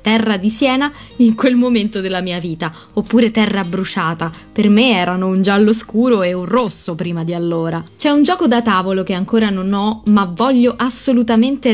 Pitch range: 190-245 Hz